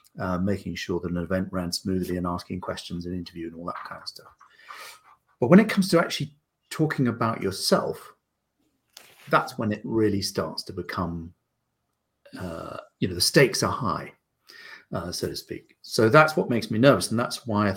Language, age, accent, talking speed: English, 40-59, British, 190 wpm